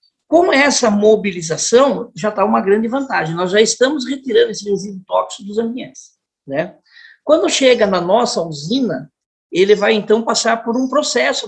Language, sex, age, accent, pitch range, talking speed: Portuguese, male, 50-69, Brazilian, 200-275 Hz, 155 wpm